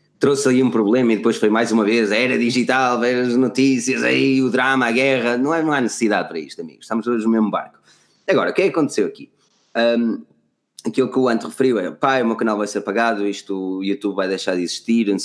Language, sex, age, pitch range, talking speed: Portuguese, male, 20-39, 105-150 Hz, 250 wpm